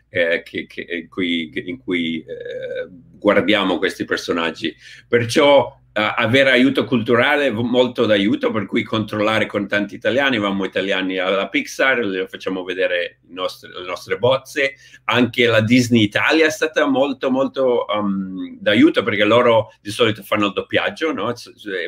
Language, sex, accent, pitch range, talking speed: Italian, male, native, 105-145 Hz, 150 wpm